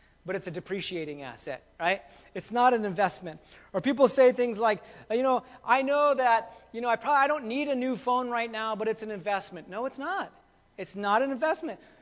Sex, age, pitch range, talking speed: male, 40-59, 195-250 Hz, 215 wpm